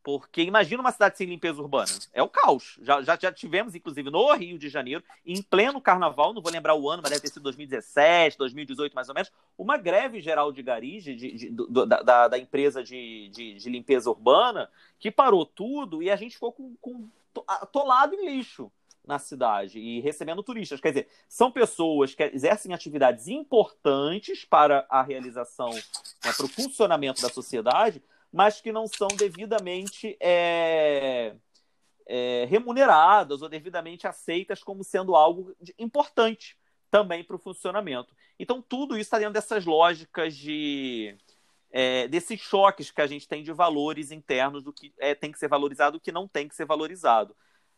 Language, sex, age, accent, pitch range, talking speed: Portuguese, male, 40-59, Brazilian, 140-215 Hz, 175 wpm